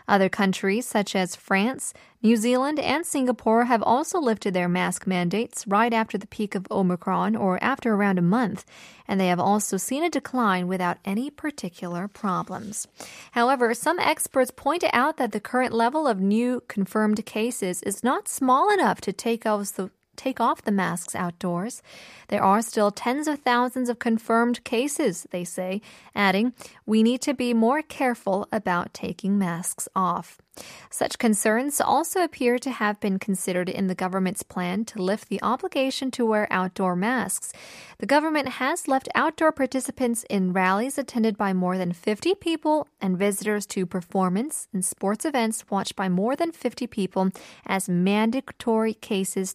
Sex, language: female, Korean